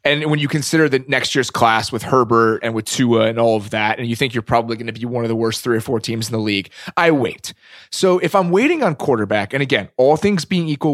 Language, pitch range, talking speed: English, 115-140 Hz, 275 wpm